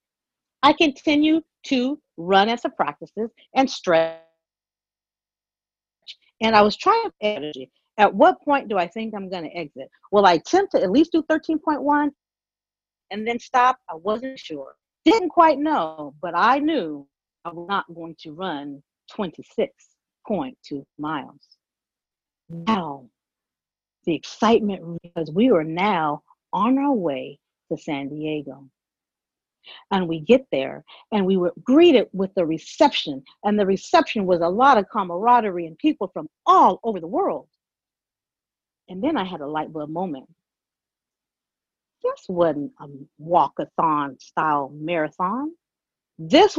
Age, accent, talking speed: 50-69, American, 135 wpm